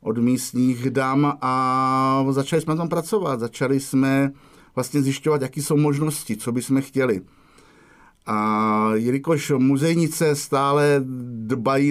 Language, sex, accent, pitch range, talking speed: English, male, Czech, 120-145 Hz, 120 wpm